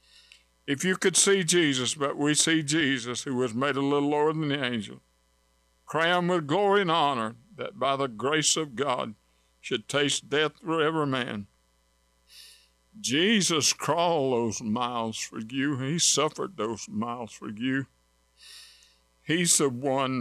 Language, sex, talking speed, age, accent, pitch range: English, male, 150 wpm, 60-79, American, 120-165 Hz